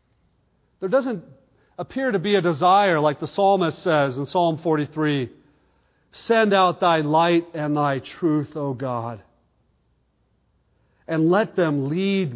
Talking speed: 130 wpm